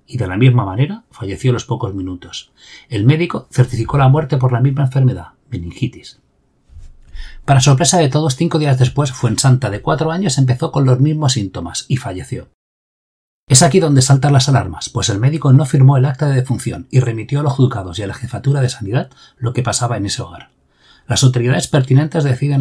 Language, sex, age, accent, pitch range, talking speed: Spanish, male, 30-49, Spanish, 120-135 Hz, 200 wpm